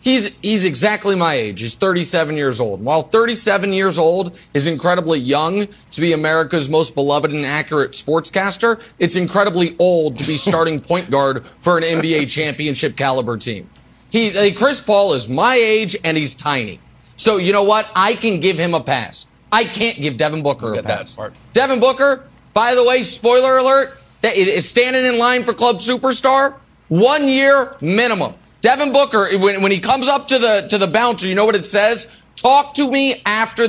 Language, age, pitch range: English, 30-49, 155-230 Hz